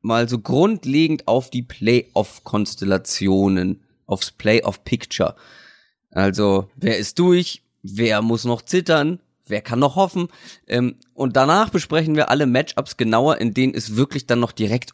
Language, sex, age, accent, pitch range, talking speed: German, male, 30-49, German, 105-145 Hz, 135 wpm